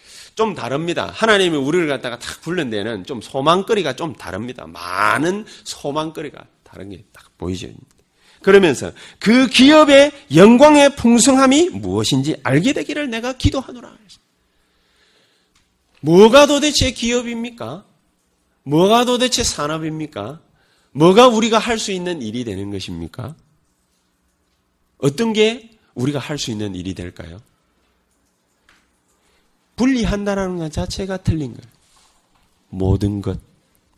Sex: male